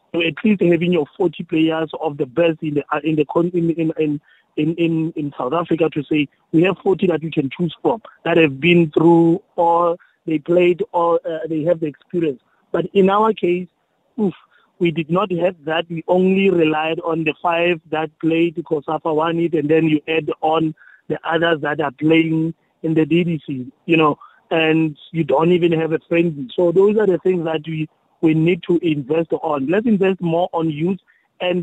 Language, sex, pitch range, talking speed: English, male, 155-175 Hz, 200 wpm